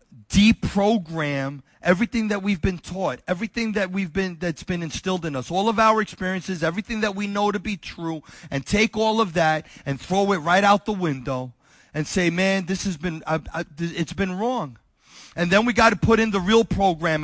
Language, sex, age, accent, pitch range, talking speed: English, male, 30-49, American, 190-270 Hz, 210 wpm